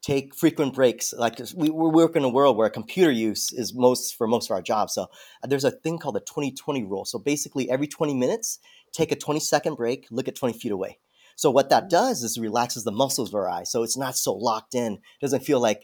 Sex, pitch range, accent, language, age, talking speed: male, 120-145 Hz, American, English, 30-49, 235 wpm